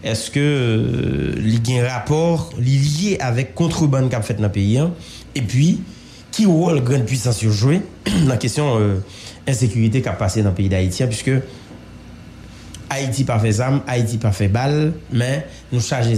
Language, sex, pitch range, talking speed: English, male, 110-145 Hz, 195 wpm